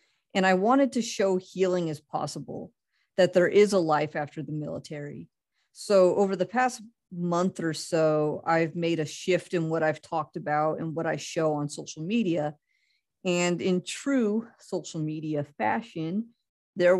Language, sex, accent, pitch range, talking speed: English, female, American, 155-195 Hz, 160 wpm